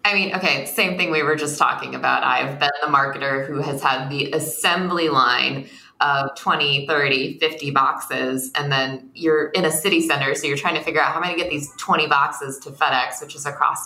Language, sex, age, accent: English, female, 20-39, American